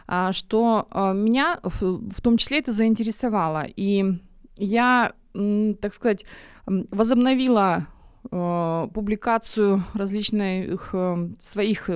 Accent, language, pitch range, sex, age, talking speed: native, Russian, 195-240 Hz, female, 20-39, 75 wpm